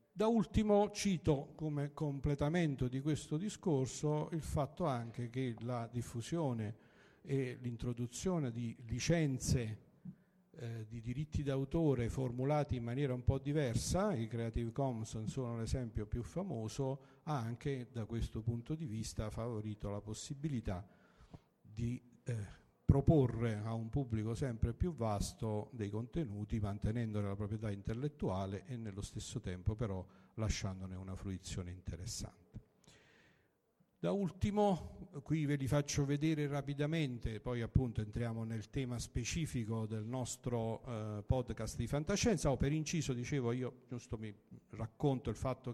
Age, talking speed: 50-69, 130 wpm